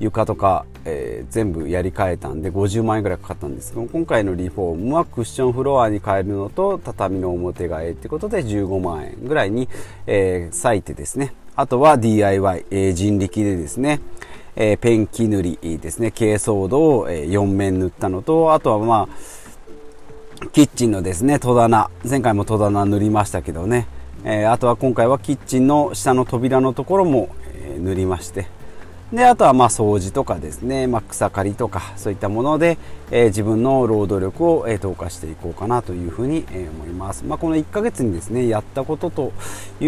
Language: Japanese